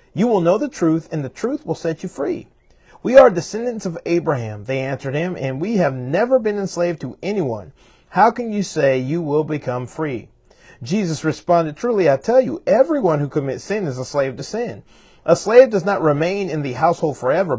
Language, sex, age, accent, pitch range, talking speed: English, male, 30-49, American, 140-200 Hz, 205 wpm